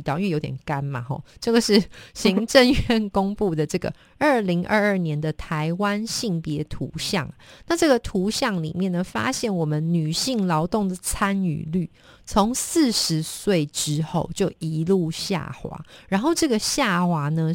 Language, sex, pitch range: Chinese, female, 160-210 Hz